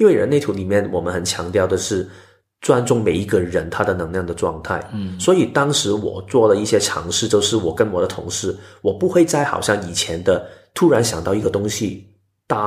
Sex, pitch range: male, 95-110 Hz